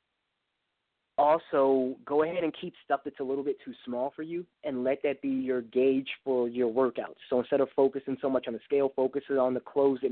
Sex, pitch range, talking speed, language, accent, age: male, 125-145 Hz, 220 wpm, English, American, 20-39